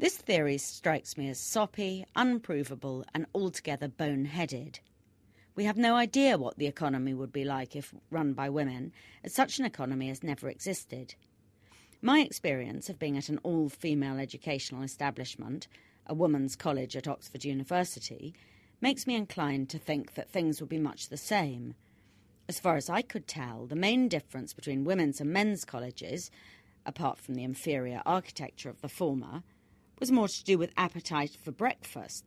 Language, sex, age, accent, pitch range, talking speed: English, female, 40-59, British, 130-180 Hz, 165 wpm